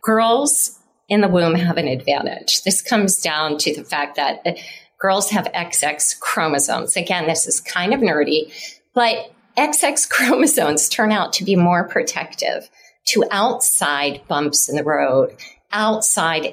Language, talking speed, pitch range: English, 145 wpm, 170-230 Hz